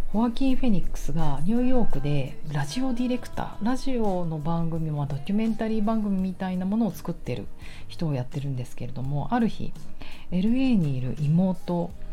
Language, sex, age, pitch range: Japanese, female, 40-59, 145-205 Hz